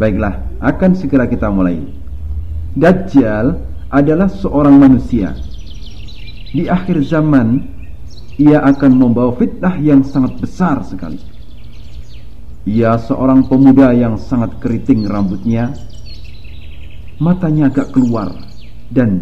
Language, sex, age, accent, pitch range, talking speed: Indonesian, male, 50-69, native, 100-140 Hz, 95 wpm